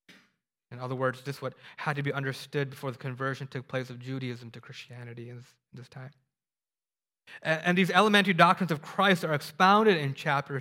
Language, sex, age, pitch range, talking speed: English, male, 20-39, 130-165 Hz, 175 wpm